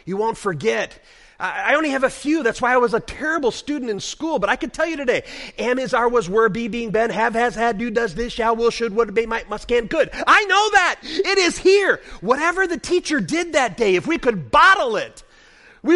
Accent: American